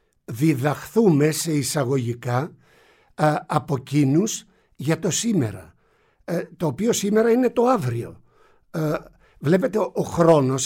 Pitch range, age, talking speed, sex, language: 125-185 Hz, 60-79, 90 wpm, male, Greek